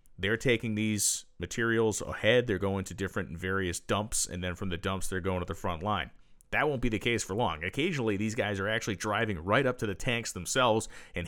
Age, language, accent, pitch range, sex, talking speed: 40-59, English, American, 95-115 Hz, male, 230 wpm